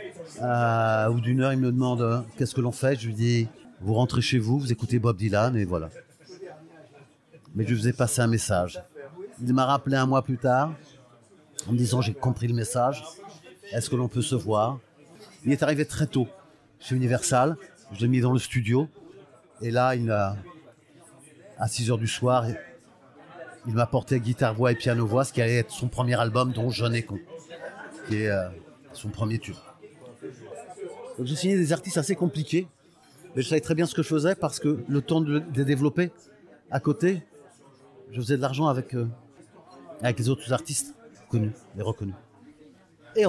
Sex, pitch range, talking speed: male, 120-150 Hz, 185 wpm